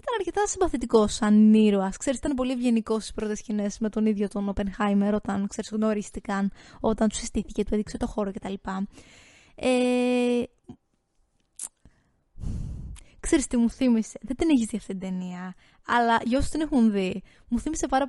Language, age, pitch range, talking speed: Greek, 20-39, 210-260 Hz, 160 wpm